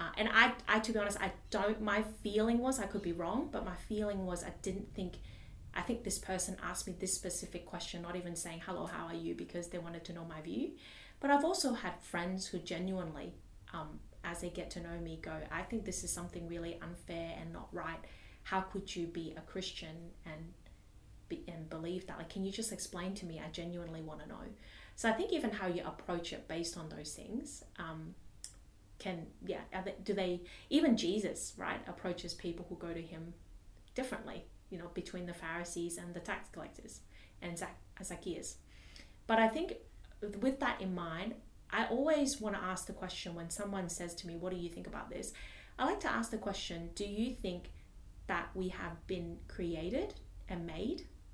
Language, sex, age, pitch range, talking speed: English, female, 30-49, 170-205 Hz, 200 wpm